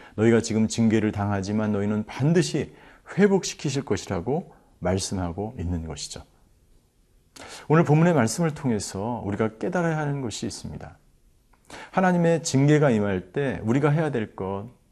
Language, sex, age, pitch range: Korean, male, 40-59, 105-145 Hz